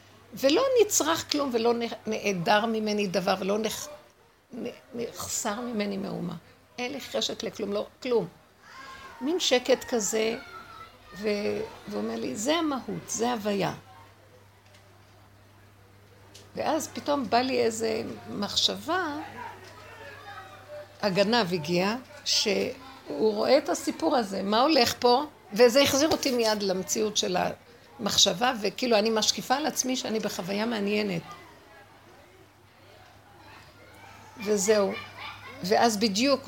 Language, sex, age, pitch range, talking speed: Hebrew, female, 60-79, 175-245 Hz, 105 wpm